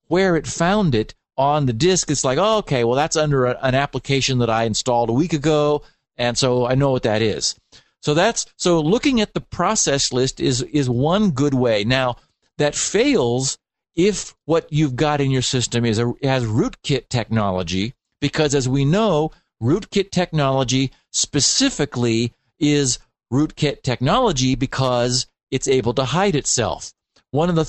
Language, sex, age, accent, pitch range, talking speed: English, male, 50-69, American, 125-170 Hz, 165 wpm